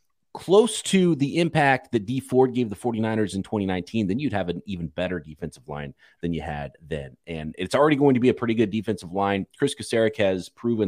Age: 30-49